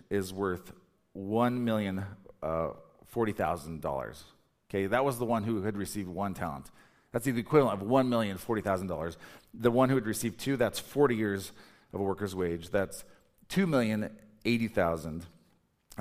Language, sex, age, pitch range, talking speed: English, male, 40-59, 100-125 Hz, 125 wpm